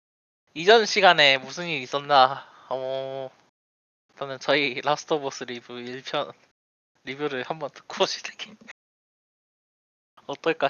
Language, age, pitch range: Korean, 20-39, 125-165 Hz